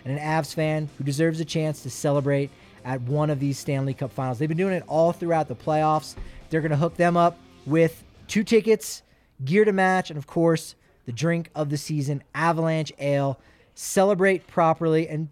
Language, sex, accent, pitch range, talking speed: English, male, American, 130-170 Hz, 195 wpm